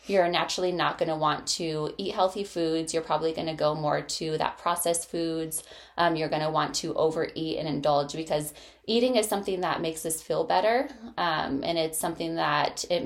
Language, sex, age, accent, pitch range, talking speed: English, female, 20-39, American, 145-170 Hz, 200 wpm